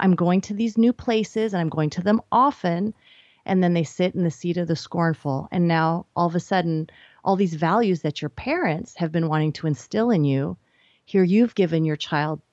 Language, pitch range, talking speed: English, 165-210 Hz, 220 wpm